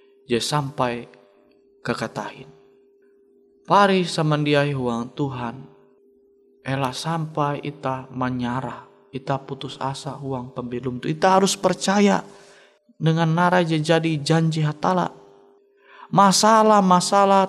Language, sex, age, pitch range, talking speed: Indonesian, male, 20-39, 135-180 Hz, 95 wpm